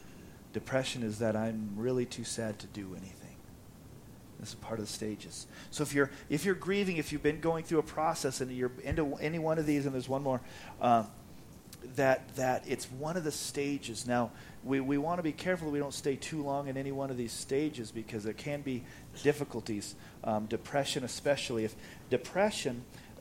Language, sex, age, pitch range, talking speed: English, male, 40-59, 115-145 Hz, 200 wpm